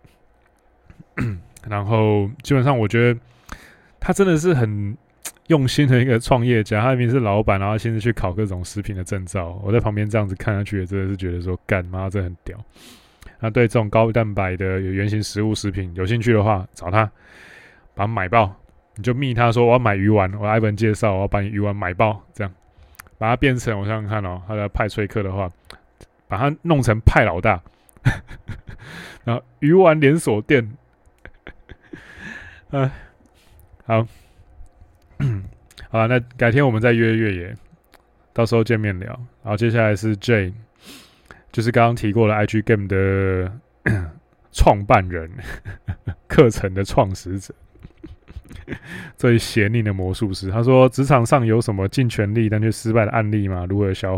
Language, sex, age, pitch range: Chinese, male, 20-39, 100-120 Hz